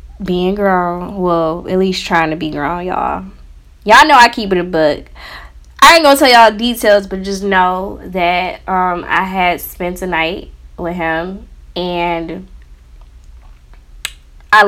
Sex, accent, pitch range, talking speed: female, American, 150-200 Hz, 150 wpm